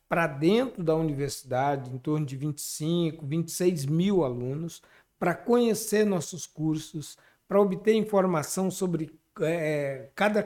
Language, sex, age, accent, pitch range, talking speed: Portuguese, male, 60-79, Brazilian, 140-175 Hz, 120 wpm